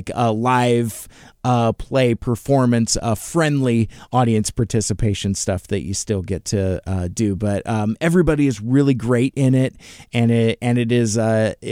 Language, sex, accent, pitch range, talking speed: English, male, American, 115-150 Hz, 170 wpm